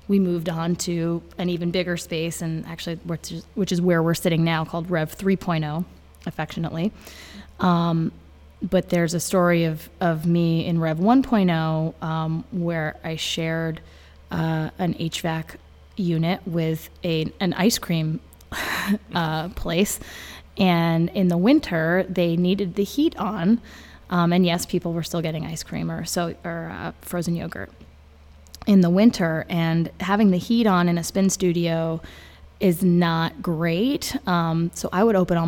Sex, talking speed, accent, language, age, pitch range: female, 150 wpm, American, English, 20-39, 160-180 Hz